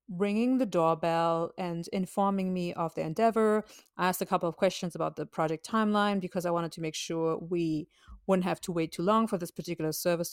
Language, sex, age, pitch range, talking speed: English, female, 30-49, 170-210 Hz, 210 wpm